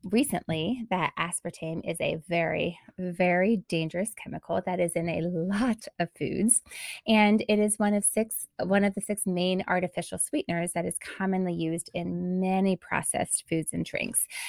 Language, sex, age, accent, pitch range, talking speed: English, female, 20-39, American, 170-205 Hz, 160 wpm